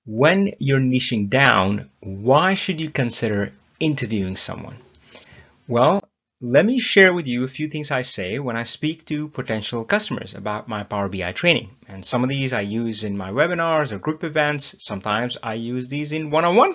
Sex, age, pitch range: male, 30-49, 105-150 Hz